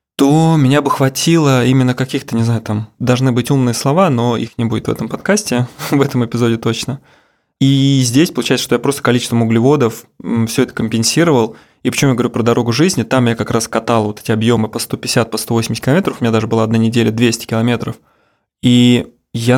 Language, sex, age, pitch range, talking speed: Russian, male, 20-39, 115-135 Hz, 200 wpm